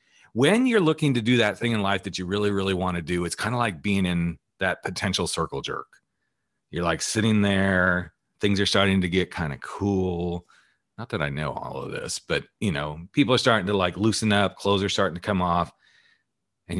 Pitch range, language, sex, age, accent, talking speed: 90-120 Hz, English, male, 40-59, American, 220 wpm